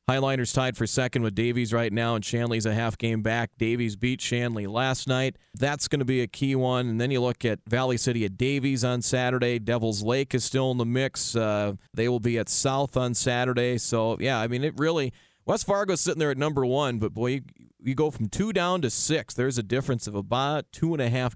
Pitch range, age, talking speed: 110-130 Hz, 30-49, 235 wpm